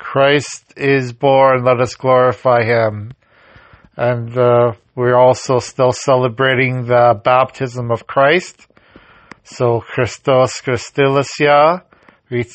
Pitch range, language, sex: 115-135 Hz, English, male